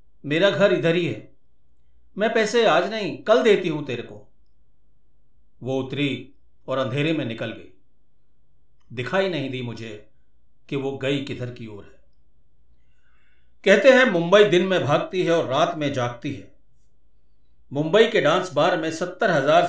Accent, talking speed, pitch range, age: native, 155 wpm, 125-165 Hz, 50-69